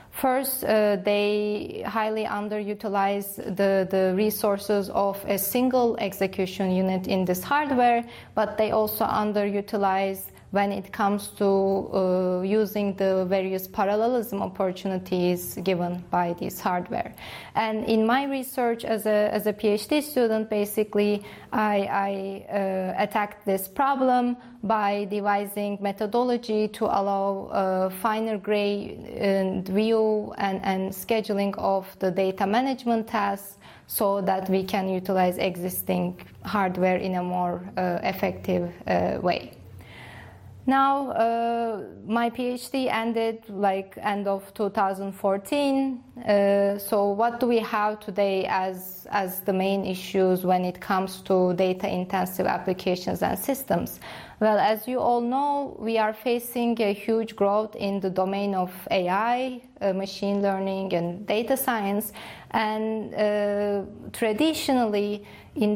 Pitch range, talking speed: 190-220 Hz, 125 wpm